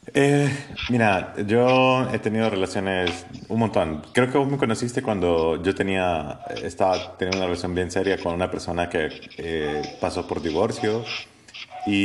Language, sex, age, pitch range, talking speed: Spanish, male, 30-49, 95-130 Hz, 155 wpm